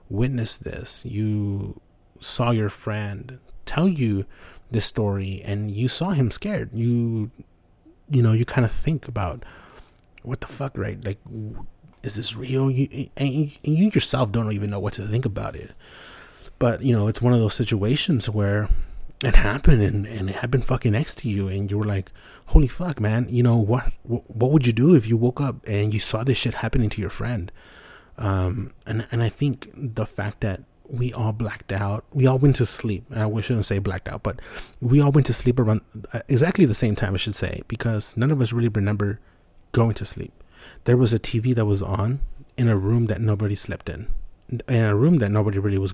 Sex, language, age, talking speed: male, English, 30-49, 205 wpm